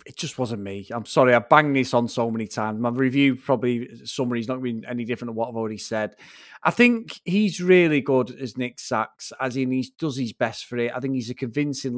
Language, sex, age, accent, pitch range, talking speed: English, male, 30-49, British, 120-150 Hz, 235 wpm